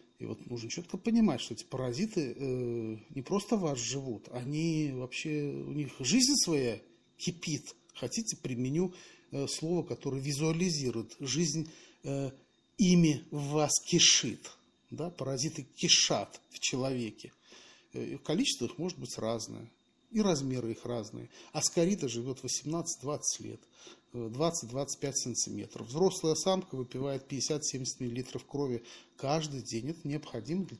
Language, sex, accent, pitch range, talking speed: Russian, male, native, 125-175 Hz, 130 wpm